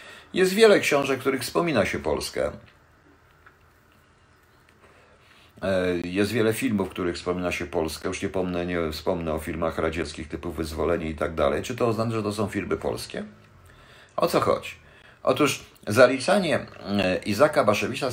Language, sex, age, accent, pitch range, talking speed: Polish, male, 50-69, native, 90-125 Hz, 145 wpm